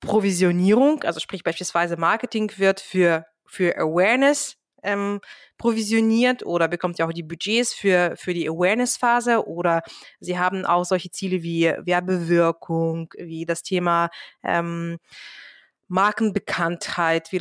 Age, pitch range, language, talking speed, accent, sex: 20-39, 175-225 Hz, German, 125 wpm, German, female